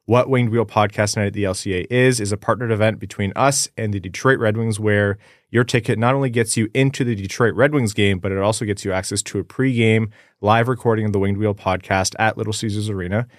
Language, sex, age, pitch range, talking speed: English, male, 20-39, 95-115 Hz, 240 wpm